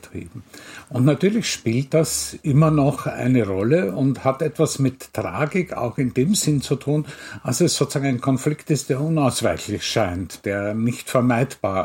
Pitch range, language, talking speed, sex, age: 120-155 Hz, German, 155 wpm, male, 50-69